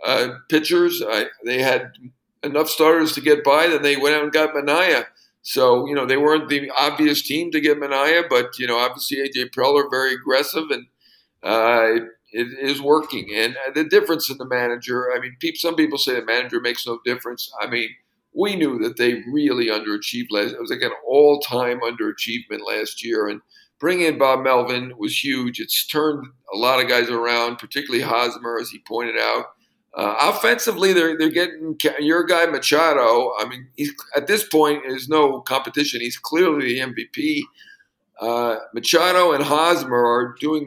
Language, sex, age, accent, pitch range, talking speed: English, male, 50-69, American, 125-170 Hz, 180 wpm